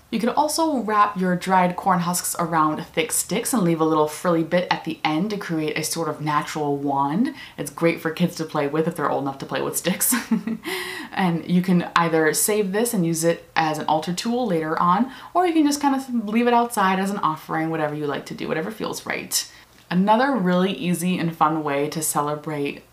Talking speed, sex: 225 wpm, female